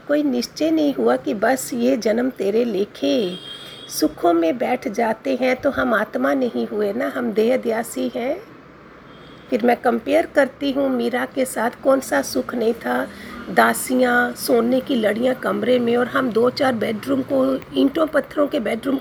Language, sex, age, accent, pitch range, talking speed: Hindi, female, 50-69, native, 225-280 Hz, 170 wpm